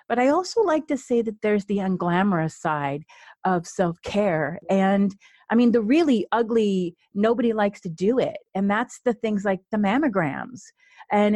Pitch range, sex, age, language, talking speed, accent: 195-255 Hz, female, 40-59, English, 170 wpm, American